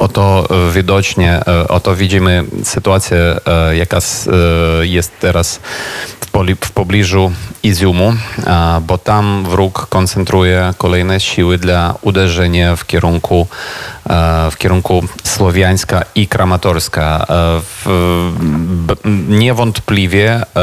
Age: 30-49